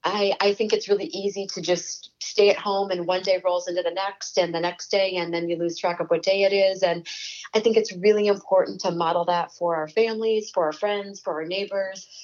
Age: 30-49